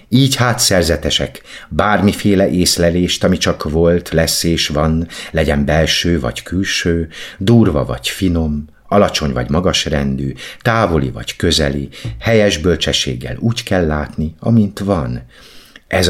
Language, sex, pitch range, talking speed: Hungarian, male, 70-95 Hz, 120 wpm